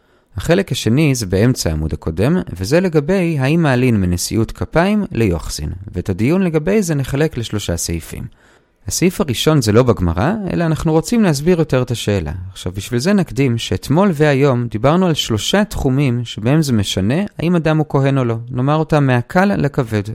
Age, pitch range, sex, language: 30-49, 105-165 Hz, male, Hebrew